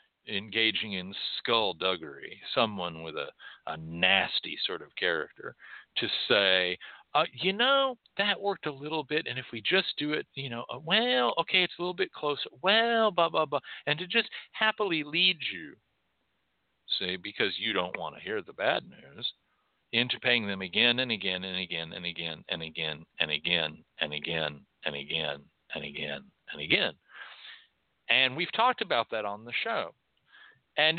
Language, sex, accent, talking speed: English, male, American, 165 wpm